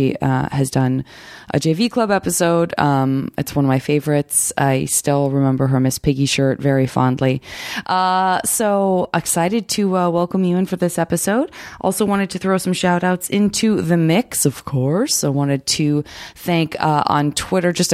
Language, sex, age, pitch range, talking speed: English, female, 20-39, 140-180 Hz, 180 wpm